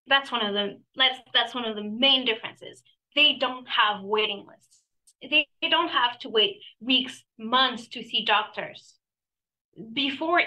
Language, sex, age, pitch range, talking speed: English, female, 20-39, 210-255 Hz, 160 wpm